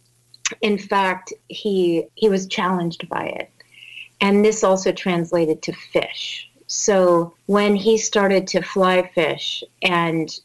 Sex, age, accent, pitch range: female, 40-59, American, 165-205 Hz